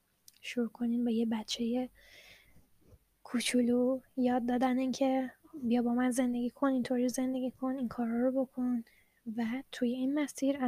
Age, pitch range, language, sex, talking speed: 10-29, 235-255 Hz, Persian, female, 150 wpm